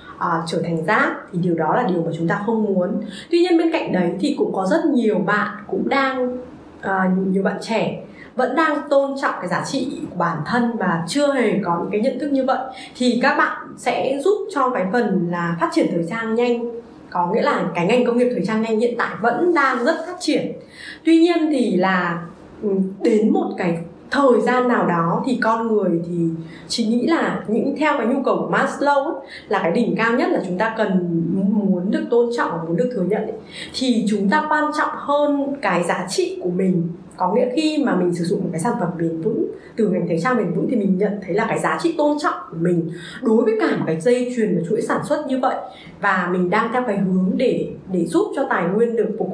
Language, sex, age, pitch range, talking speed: Vietnamese, female, 20-39, 180-265 Hz, 235 wpm